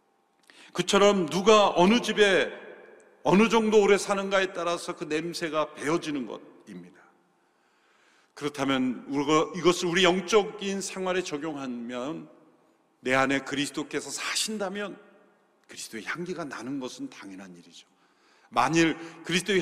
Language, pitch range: Korean, 155-215 Hz